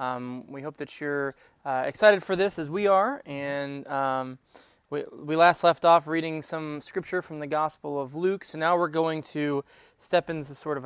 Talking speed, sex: 200 wpm, male